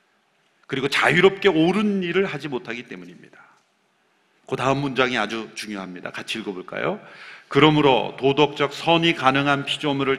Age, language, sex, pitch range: 40-59, Korean, male, 140-215 Hz